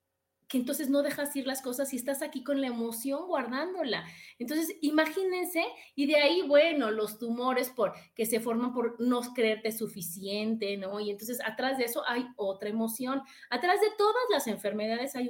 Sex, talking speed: female, 175 wpm